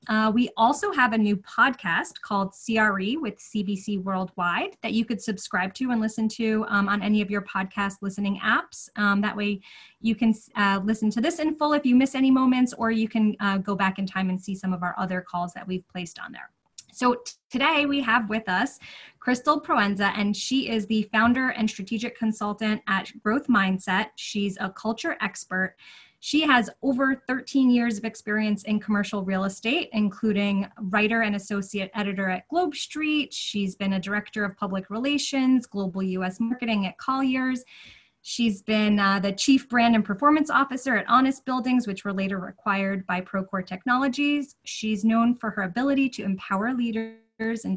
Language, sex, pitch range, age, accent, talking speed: English, female, 195-245 Hz, 20-39, American, 185 wpm